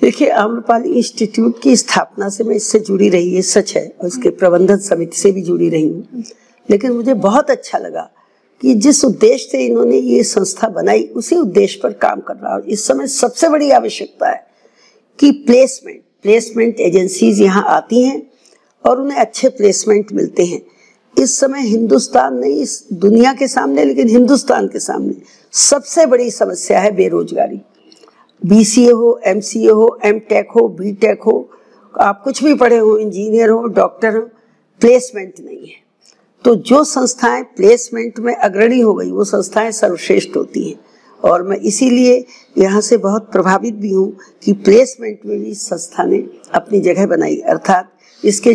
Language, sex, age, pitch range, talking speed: Hindi, female, 60-79, 200-250 Hz, 155 wpm